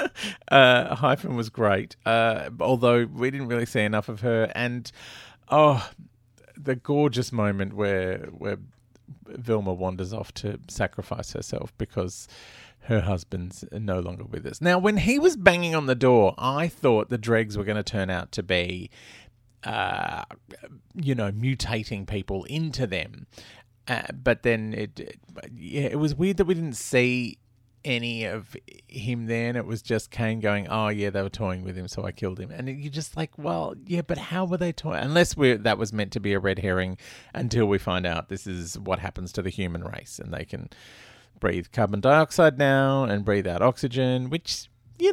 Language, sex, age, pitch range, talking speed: English, male, 30-49, 100-135 Hz, 180 wpm